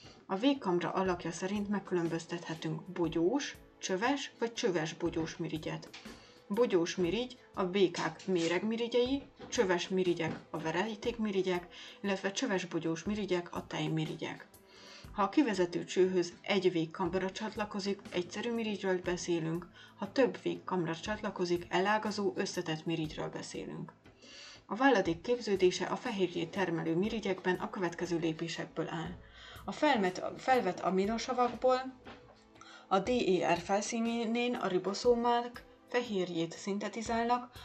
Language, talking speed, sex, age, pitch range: Hungarian, 110 wpm, female, 30-49, 170-220 Hz